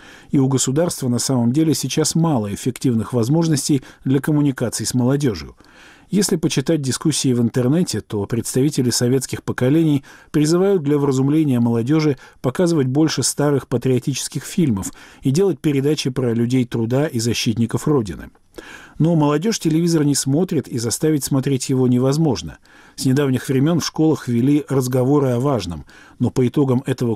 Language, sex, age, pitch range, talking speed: Russian, male, 50-69, 120-155 Hz, 140 wpm